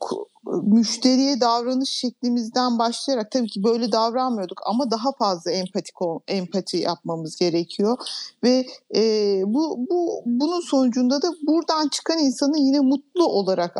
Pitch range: 220-275 Hz